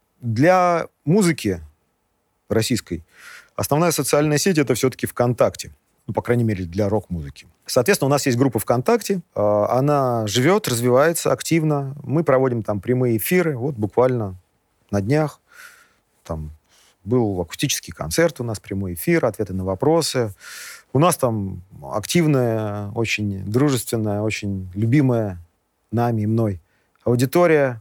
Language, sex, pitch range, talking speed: Russian, male, 105-145 Hz, 125 wpm